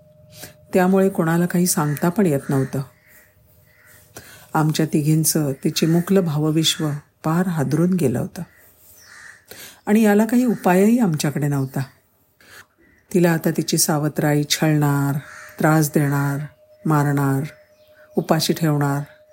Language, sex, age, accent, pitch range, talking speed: Marathi, female, 50-69, native, 145-185 Hz, 65 wpm